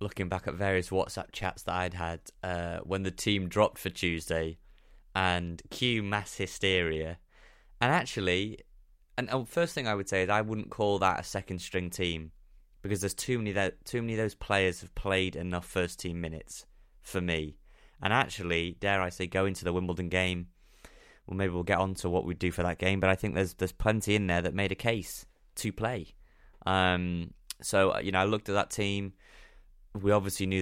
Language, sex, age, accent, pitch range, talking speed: English, male, 20-39, British, 90-100 Hz, 200 wpm